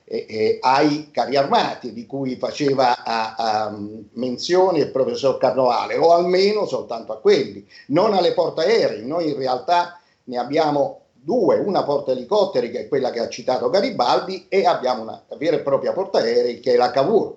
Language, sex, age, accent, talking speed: Italian, male, 50-69, native, 180 wpm